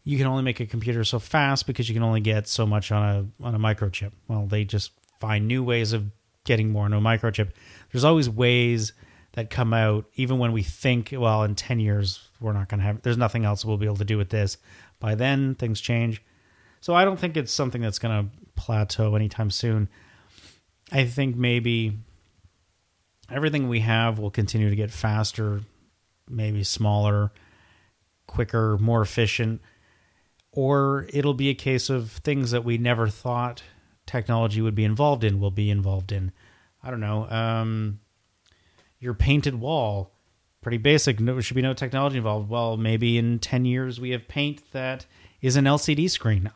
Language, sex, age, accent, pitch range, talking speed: English, male, 30-49, American, 105-125 Hz, 185 wpm